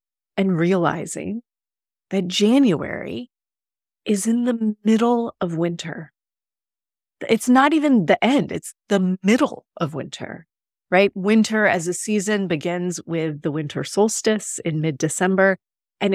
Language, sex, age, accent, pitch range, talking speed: English, female, 30-49, American, 160-205 Hz, 125 wpm